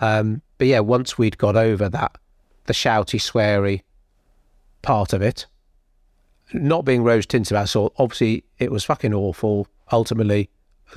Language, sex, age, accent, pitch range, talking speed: English, male, 40-59, British, 105-135 Hz, 150 wpm